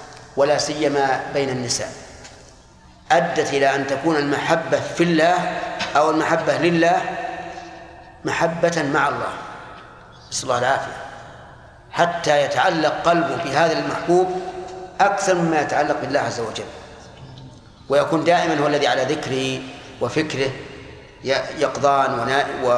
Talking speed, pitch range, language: 100 wpm, 130-160 Hz, Arabic